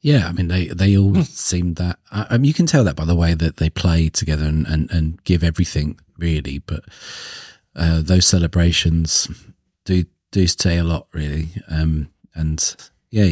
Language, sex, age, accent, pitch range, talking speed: English, male, 40-59, British, 80-95 Hz, 180 wpm